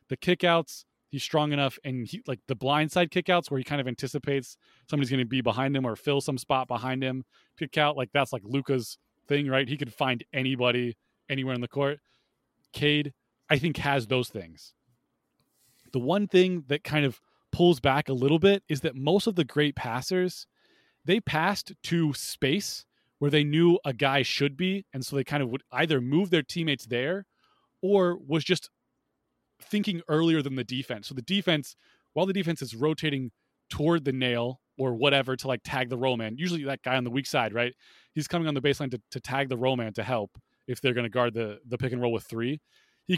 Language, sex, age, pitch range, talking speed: English, male, 20-39, 130-165 Hz, 210 wpm